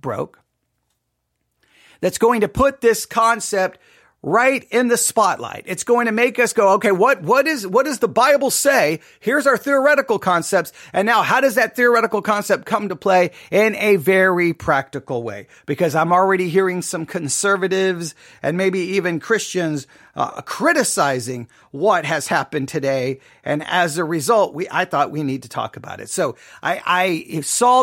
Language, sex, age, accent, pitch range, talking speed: English, male, 40-59, American, 175-240 Hz, 170 wpm